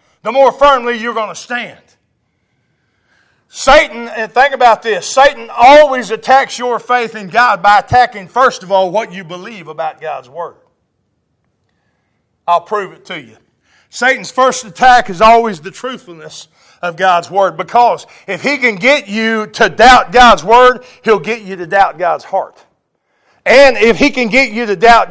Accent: American